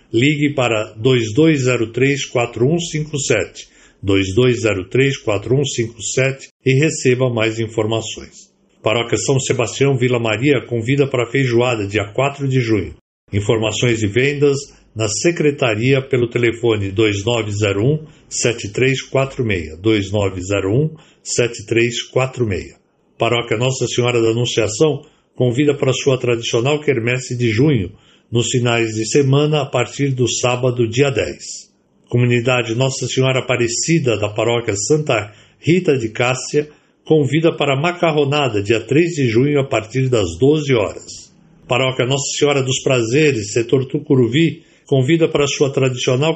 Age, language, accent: 60-79, Portuguese, Brazilian